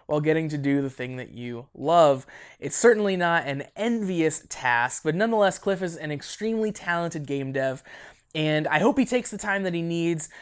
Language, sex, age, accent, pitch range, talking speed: English, male, 20-39, American, 150-205 Hz, 195 wpm